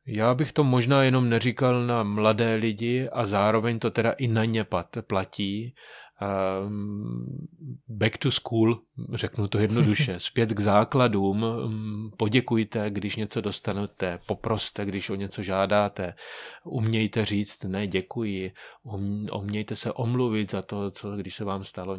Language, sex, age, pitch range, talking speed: Czech, male, 30-49, 100-115 Hz, 130 wpm